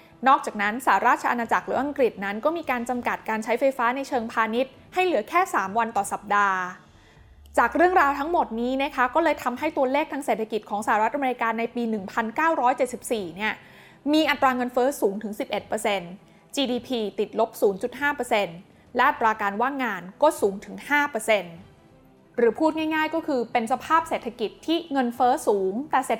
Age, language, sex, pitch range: 20-39, Thai, female, 215-280 Hz